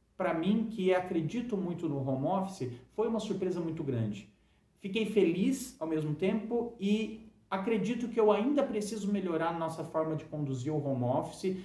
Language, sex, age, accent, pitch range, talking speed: Portuguese, male, 40-59, Brazilian, 130-190 Hz, 170 wpm